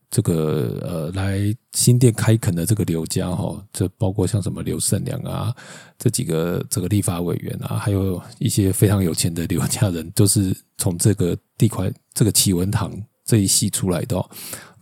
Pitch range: 95-125 Hz